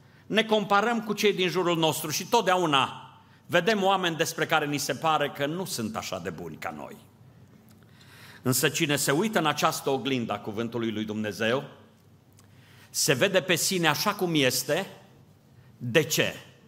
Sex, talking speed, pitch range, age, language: male, 155 wpm, 115-170 Hz, 50-69, Romanian